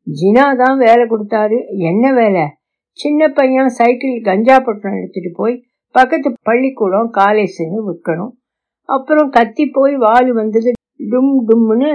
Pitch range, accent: 205-260 Hz, native